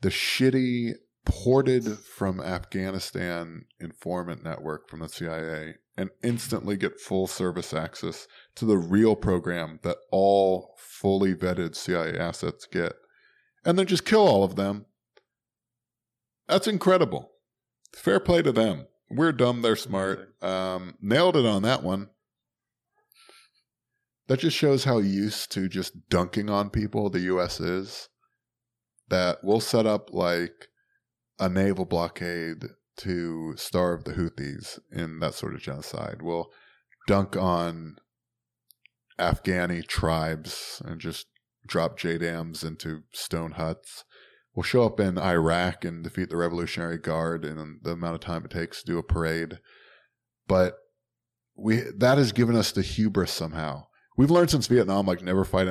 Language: English